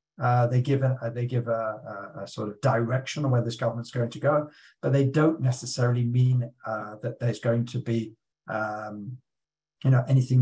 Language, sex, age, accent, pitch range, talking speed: English, male, 50-69, British, 120-140 Hz, 195 wpm